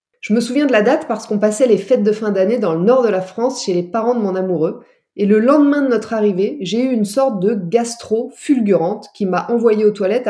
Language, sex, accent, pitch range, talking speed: French, female, French, 200-255 Hz, 255 wpm